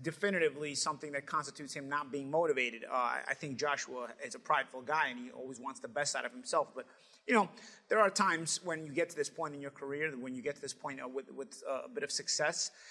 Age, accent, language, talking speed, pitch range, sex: 30-49, American, English, 250 wpm, 140-185 Hz, male